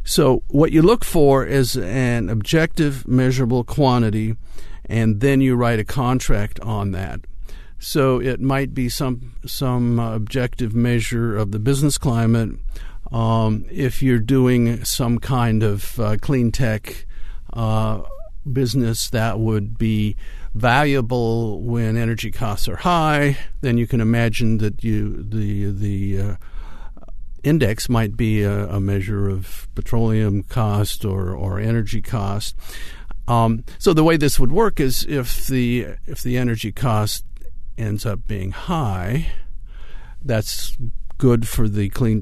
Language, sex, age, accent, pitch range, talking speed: English, male, 50-69, American, 105-130 Hz, 140 wpm